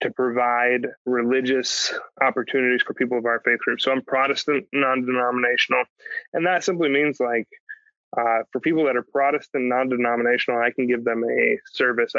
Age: 20-39